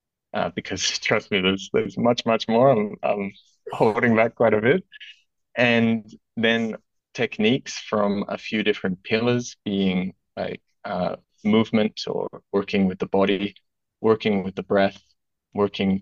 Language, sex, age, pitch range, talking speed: English, male, 20-39, 95-110 Hz, 140 wpm